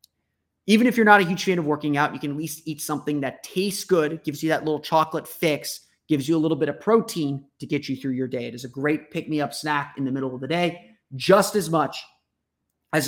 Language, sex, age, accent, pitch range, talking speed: English, male, 30-49, American, 135-180 Hz, 250 wpm